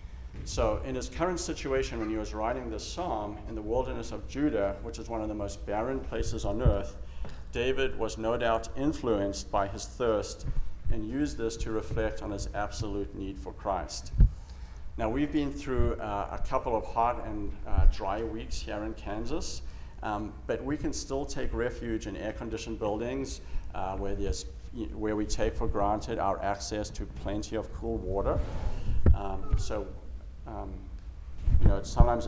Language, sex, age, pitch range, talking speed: English, male, 50-69, 95-115 Hz, 170 wpm